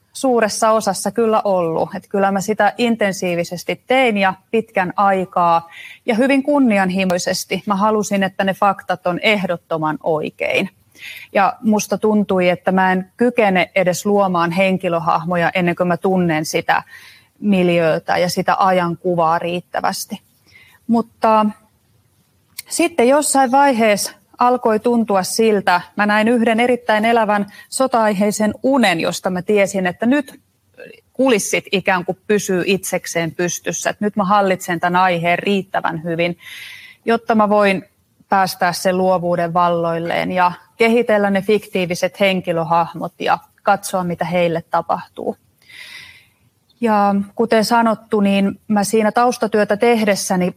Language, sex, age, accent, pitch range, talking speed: Finnish, female, 30-49, native, 180-220 Hz, 120 wpm